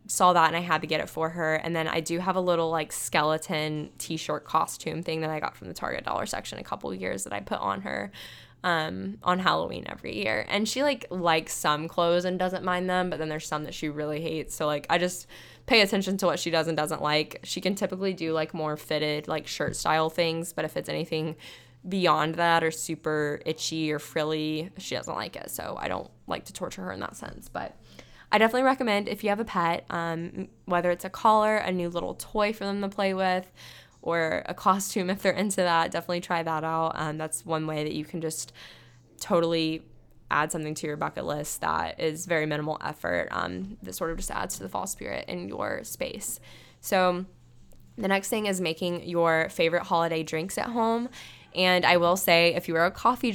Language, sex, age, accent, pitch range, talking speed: English, female, 10-29, American, 155-185 Hz, 225 wpm